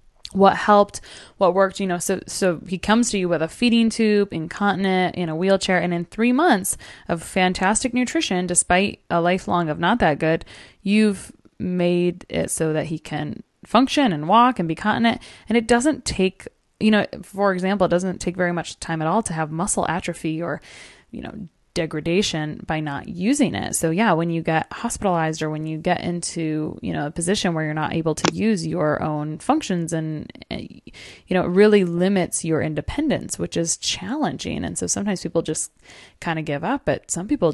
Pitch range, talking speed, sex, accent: 160-200 Hz, 195 wpm, female, American